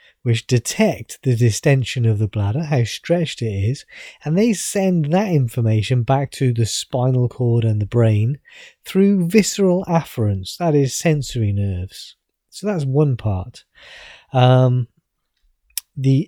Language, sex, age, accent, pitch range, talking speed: English, male, 30-49, British, 115-160 Hz, 135 wpm